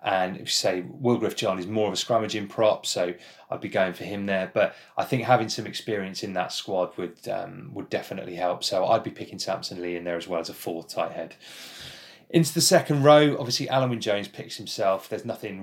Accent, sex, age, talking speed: British, male, 20-39, 225 wpm